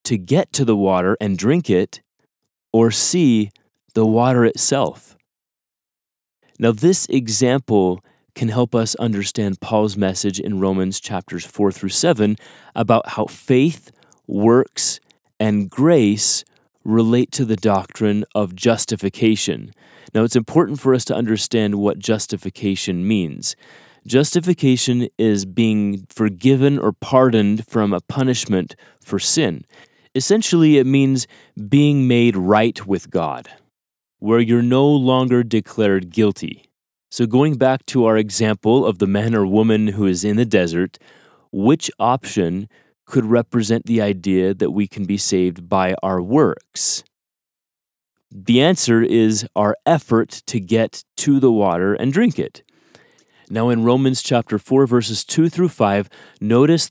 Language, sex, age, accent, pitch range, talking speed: English, male, 30-49, American, 100-125 Hz, 135 wpm